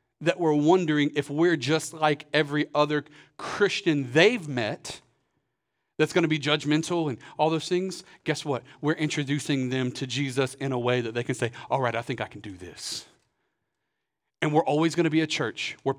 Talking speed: 195 wpm